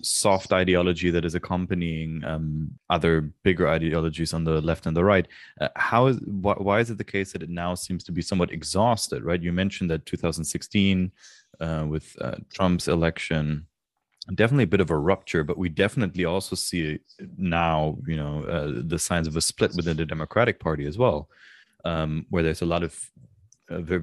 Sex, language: male, English